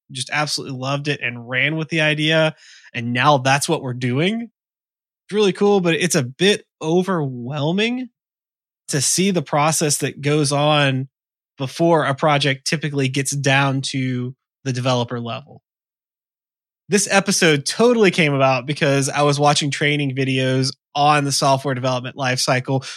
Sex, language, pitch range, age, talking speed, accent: male, English, 130-150 Hz, 20-39, 145 wpm, American